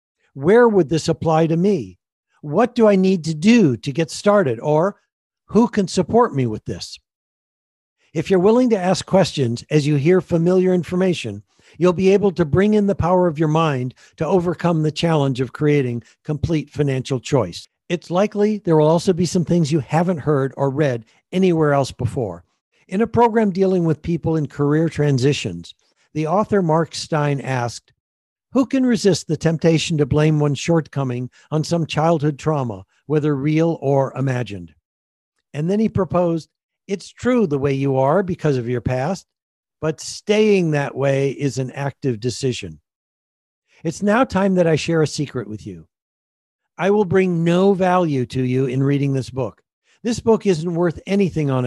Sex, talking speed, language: male, 175 wpm, English